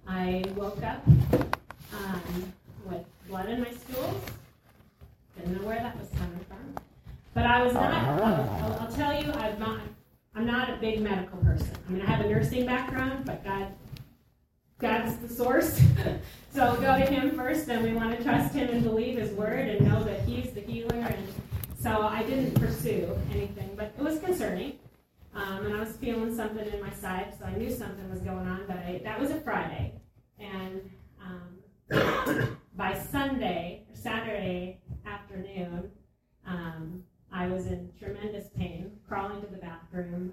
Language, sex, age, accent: English, female, 30-49, American